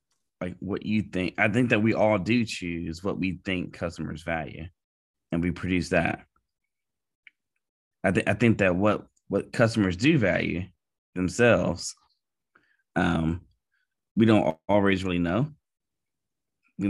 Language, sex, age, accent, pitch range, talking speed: English, male, 20-39, American, 80-105 Hz, 140 wpm